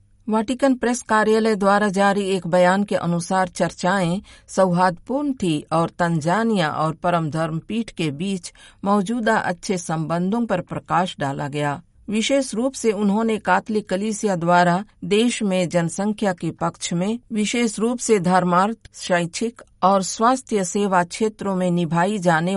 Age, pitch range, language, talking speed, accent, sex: 50-69, 170-215 Hz, Hindi, 135 wpm, native, female